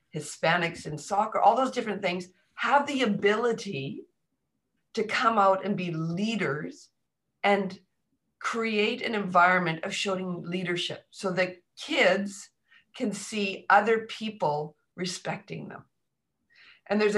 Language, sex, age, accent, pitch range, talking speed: English, female, 50-69, American, 165-205 Hz, 120 wpm